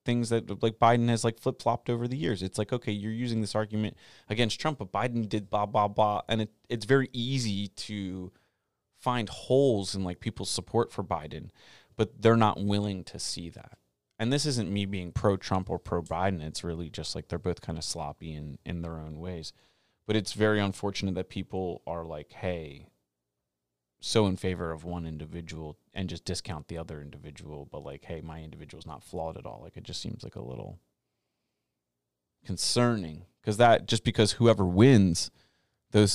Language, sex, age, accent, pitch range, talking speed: English, male, 30-49, American, 85-110 Hz, 190 wpm